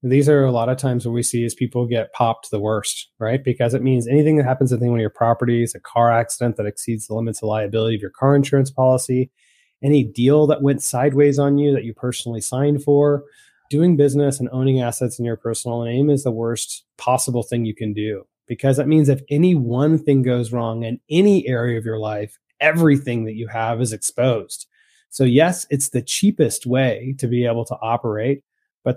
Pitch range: 120-140 Hz